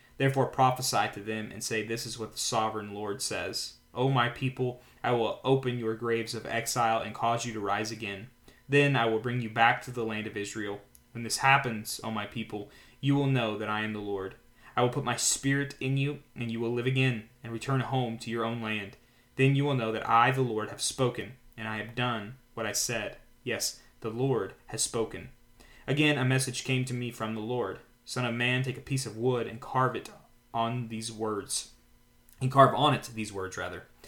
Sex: male